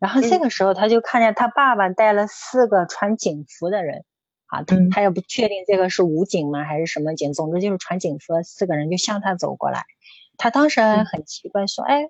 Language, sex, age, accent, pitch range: Chinese, female, 20-39, native, 170-215 Hz